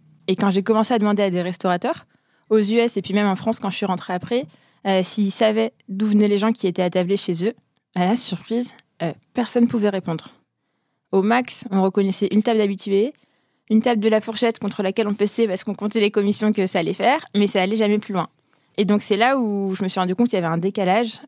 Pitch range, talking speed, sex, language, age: 180-220 Hz, 245 wpm, female, French, 20-39